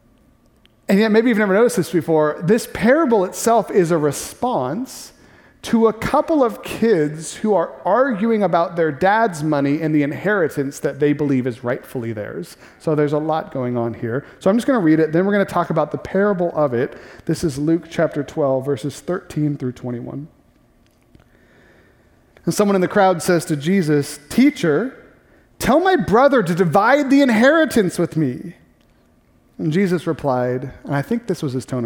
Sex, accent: male, American